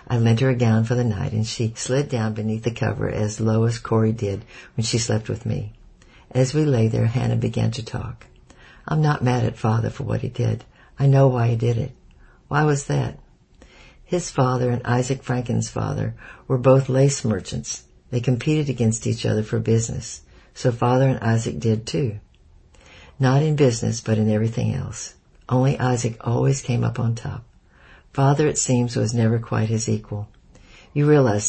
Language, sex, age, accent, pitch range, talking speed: English, female, 60-79, American, 115-130 Hz, 185 wpm